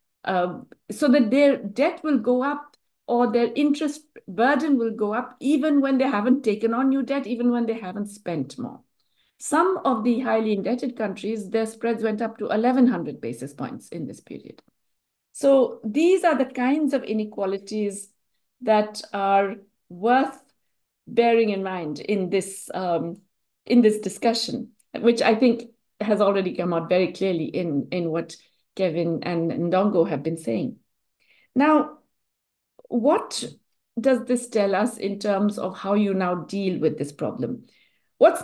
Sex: female